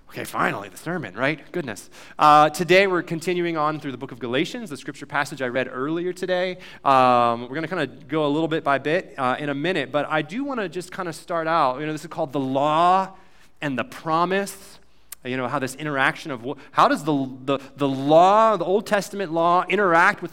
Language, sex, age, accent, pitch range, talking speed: English, male, 30-49, American, 135-185 Hz, 225 wpm